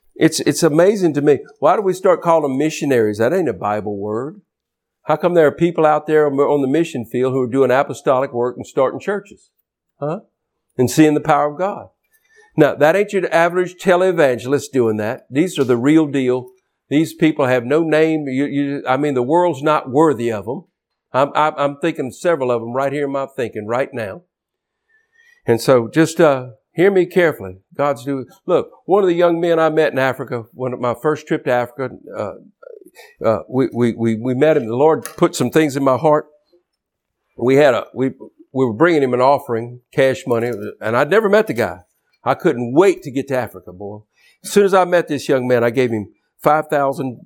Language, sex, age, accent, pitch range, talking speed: English, male, 60-79, American, 125-165 Hz, 210 wpm